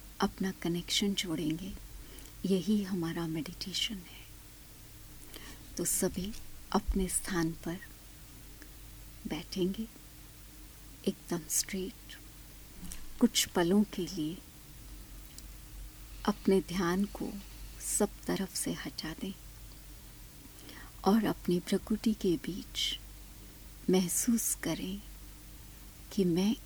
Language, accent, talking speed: Hindi, native, 80 wpm